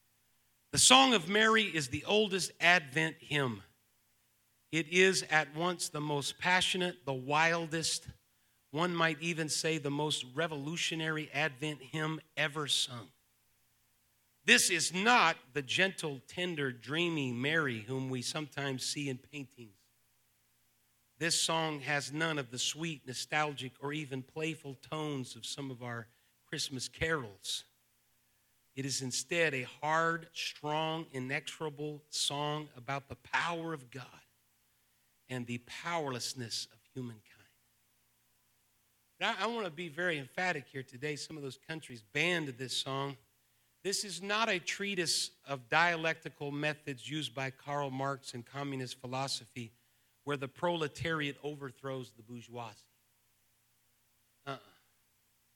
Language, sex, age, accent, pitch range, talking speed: English, male, 50-69, American, 125-160 Hz, 125 wpm